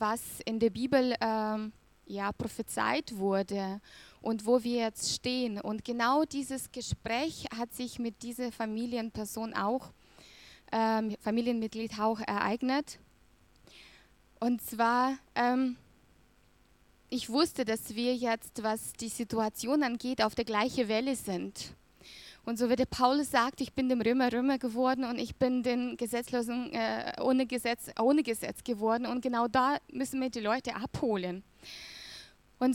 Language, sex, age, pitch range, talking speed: German, female, 20-39, 225-260 Hz, 140 wpm